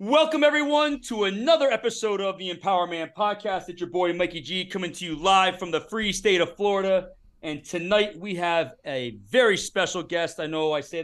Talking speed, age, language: 200 wpm, 40-59, English